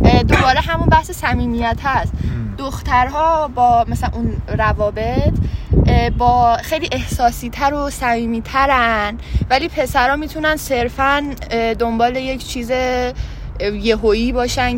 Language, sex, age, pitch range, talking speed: Persian, female, 10-29, 220-275 Hz, 100 wpm